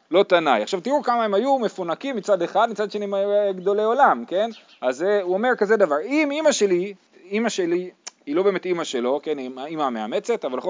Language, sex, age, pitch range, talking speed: Hebrew, male, 30-49, 155-220 Hz, 220 wpm